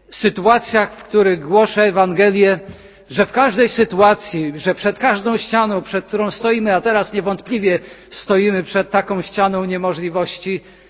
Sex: male